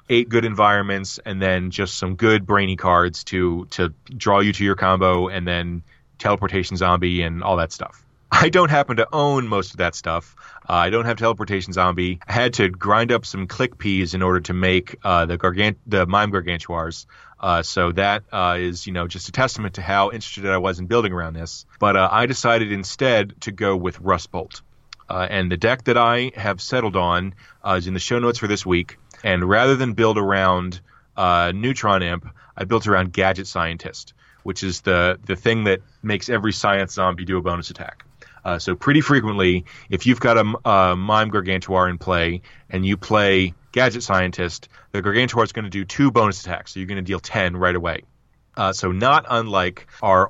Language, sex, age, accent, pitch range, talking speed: English, male, 20-39, American, 90-110 Hz, 205 wpm